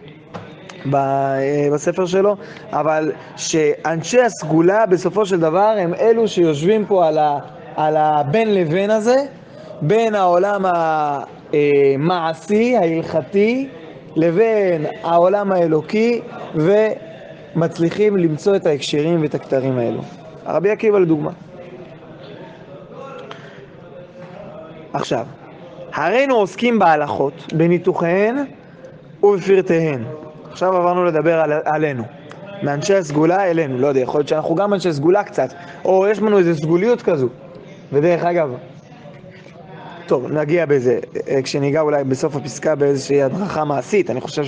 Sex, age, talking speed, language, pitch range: male, 20-39, 105 wpm, English, 155-195 Hz